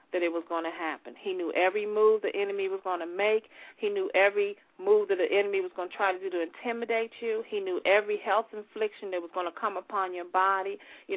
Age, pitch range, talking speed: 40-59, 185-225 Hz, 245 wpm